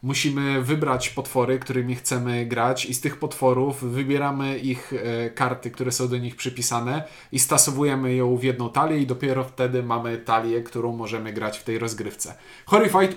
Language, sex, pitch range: Polish, male, 125-160 Hz